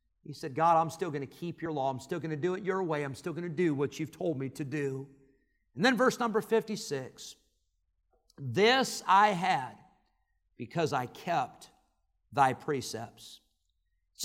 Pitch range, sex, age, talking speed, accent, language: 160-215 Hz, male, 50-69, 180 wpm, American, English